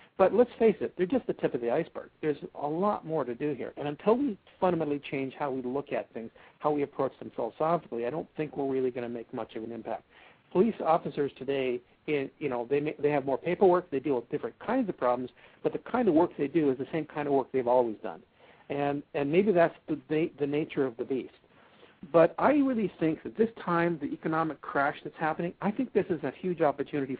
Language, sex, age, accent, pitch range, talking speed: English, male, 60-79, American, 130-165 Hz, 245 wpm